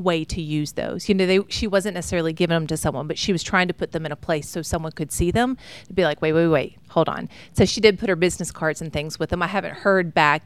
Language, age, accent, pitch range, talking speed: English, 40-59, American, 160-190 Hz, 300 wpm